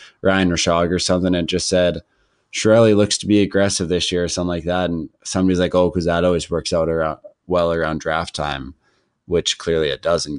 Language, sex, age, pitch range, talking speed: English, male, 20-39, 85-95 Hz, 210 wpm